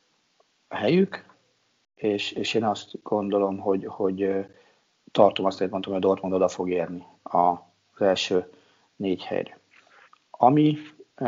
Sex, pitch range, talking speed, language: male, 95-105 Hz, 120 wpm, Hungarian